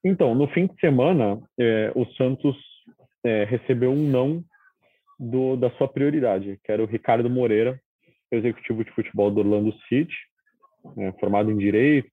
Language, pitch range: Portuguese, 110-145 Hz